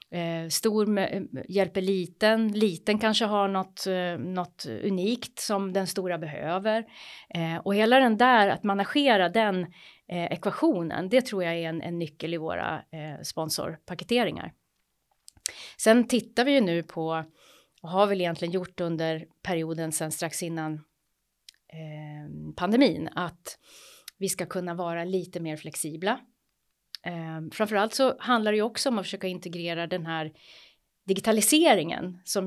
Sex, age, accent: female, 30-49, native